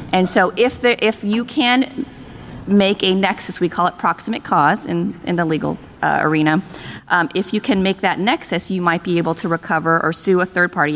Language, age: English, 30-49